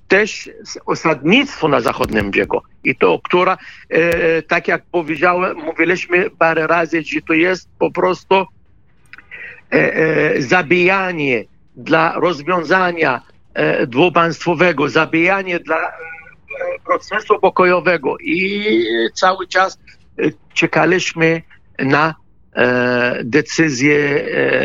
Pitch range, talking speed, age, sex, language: 130-180 Hz, 80 wpm, 50-69, male, Polish